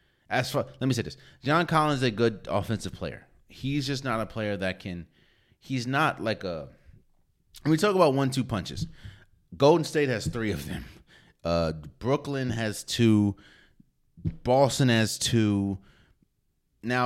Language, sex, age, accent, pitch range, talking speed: English, male, 30-49, American, 90-125 Hz, 160 wpm